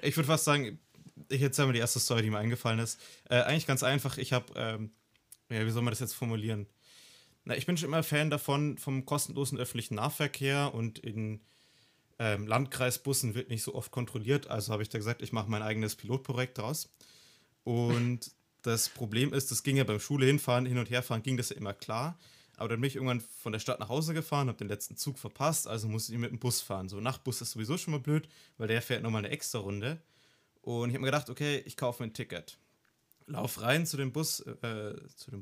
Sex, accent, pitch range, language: male, German, 115-140 Hz, German